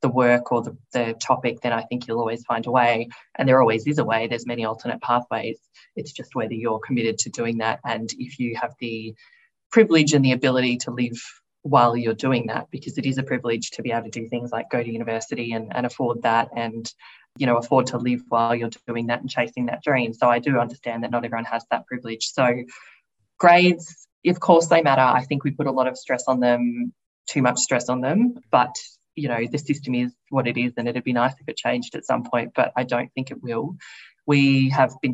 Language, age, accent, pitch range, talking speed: English, 20-39, Australian, 120-130 Hz, 235 wpm